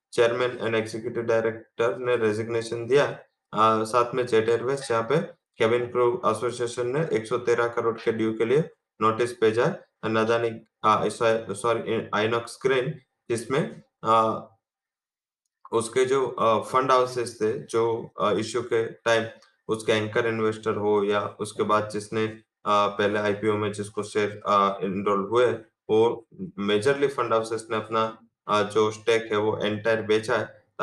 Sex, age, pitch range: male, 20-39, 110-120 Hz